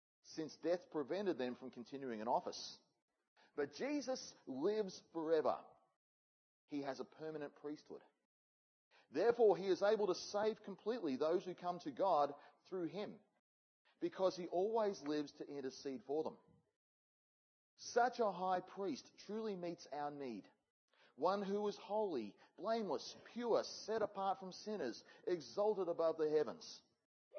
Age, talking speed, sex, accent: 40-59, 135 wpm, male, Australian